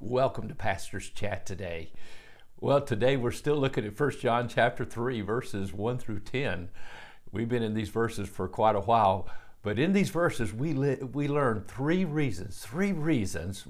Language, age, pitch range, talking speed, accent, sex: English, 60-79, 110-150 Hz, 175 wpm, American, male